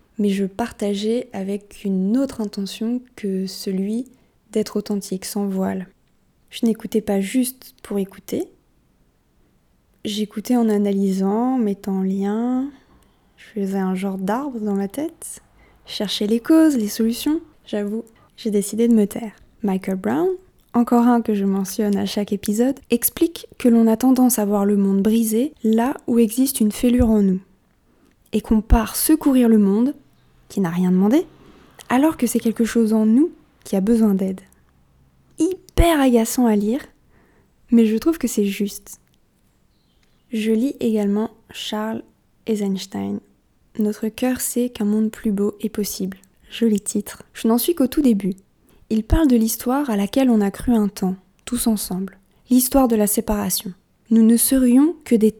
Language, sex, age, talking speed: English, female, 20-39, 160 wpm